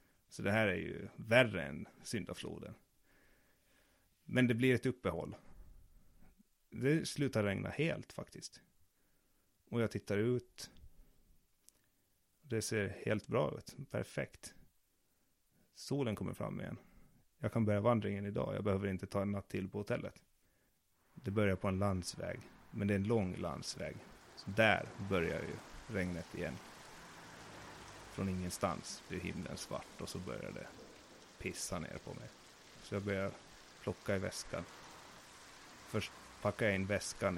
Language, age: Swedish, 30-49